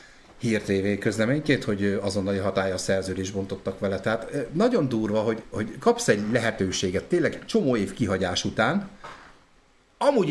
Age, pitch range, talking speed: 50-69, 100-145 Hz, 135 wpm